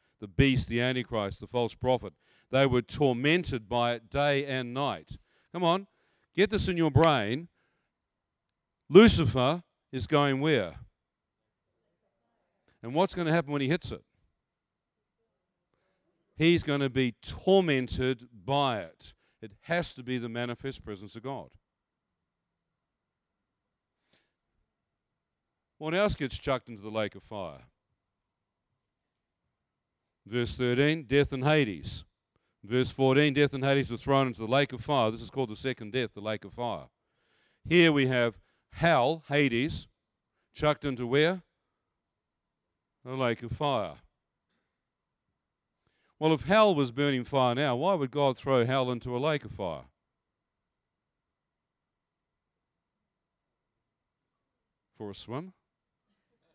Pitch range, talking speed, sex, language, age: 115-145 Hz, 125 wpm, male, English, 50-69